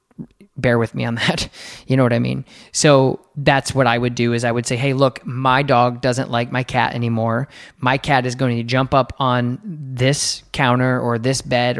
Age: 20-39